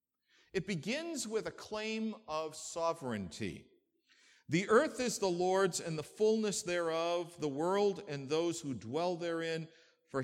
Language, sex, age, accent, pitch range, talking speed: English, male, 50-69, American, 125-190 Hz, 140 wpm